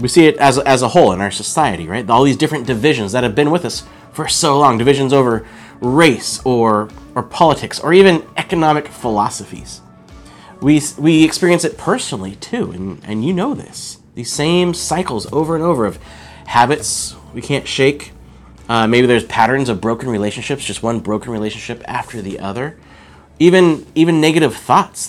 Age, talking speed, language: 30-49, 175 wpm, English